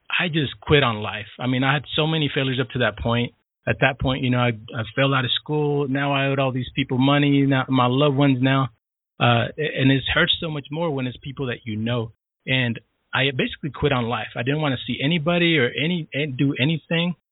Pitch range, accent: 120-145 Hz, American